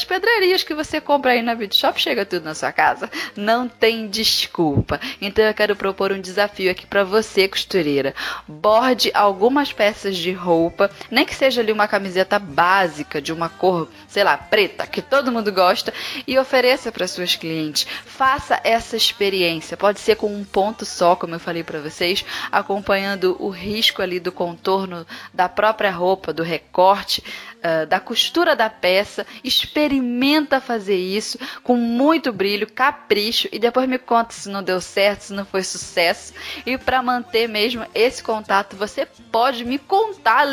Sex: female